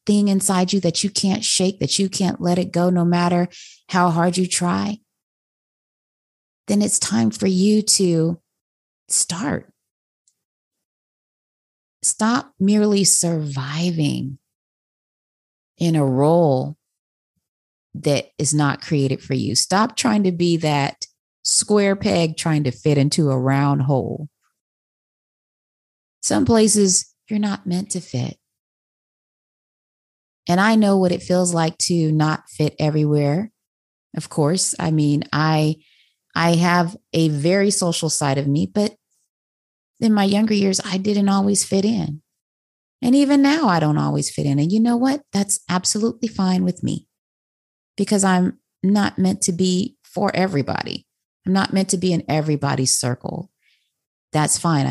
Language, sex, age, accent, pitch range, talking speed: English, female, 30-49, American, 150-200 Hz, 140 wpm